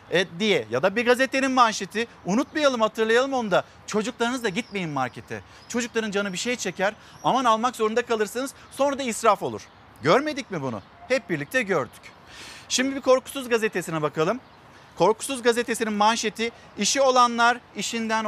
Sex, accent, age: male, native, 50-69